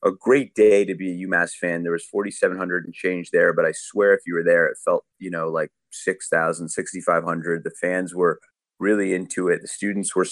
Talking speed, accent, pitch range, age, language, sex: 215 wpm, American, 90-115 Hz, 30-49, English, male